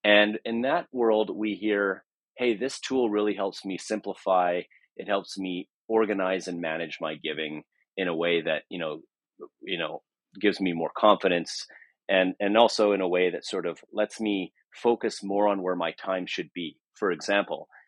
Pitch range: 85-105 Hz